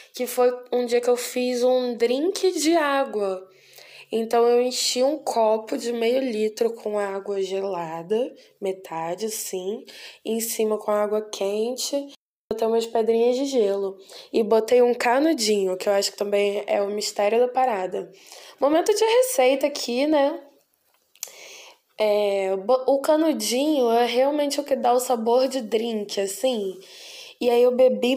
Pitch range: 210-265 Hz